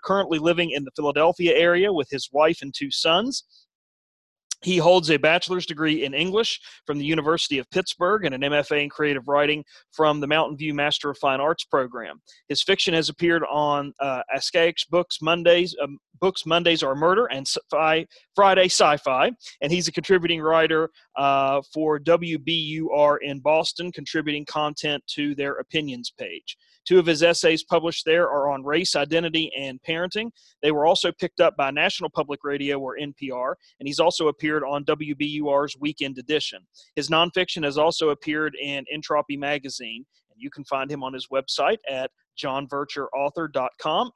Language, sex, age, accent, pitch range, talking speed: English, male, 30-49, American, 140-170 Hz, 165 wpm